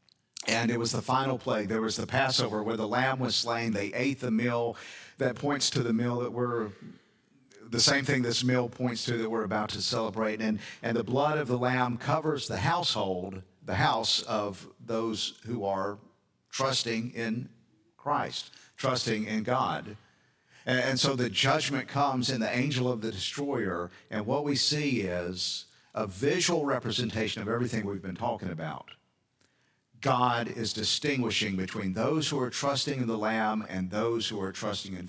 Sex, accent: male, American